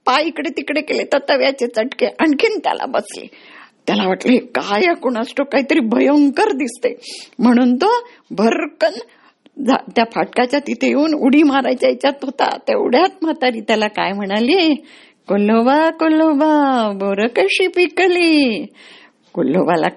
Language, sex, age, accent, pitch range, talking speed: Marathi, female, 50-69, native, 235-325 Hz, 115 wpm